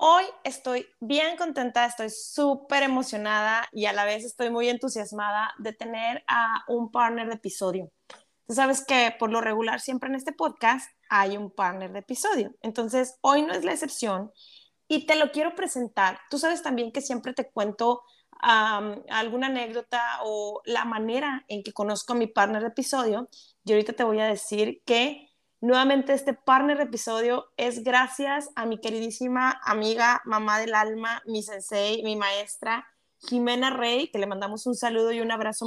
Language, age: Spanish, 20-39